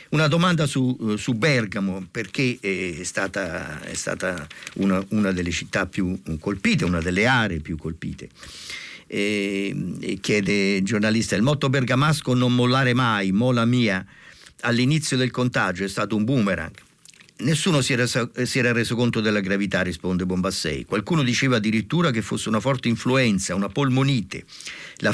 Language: Italian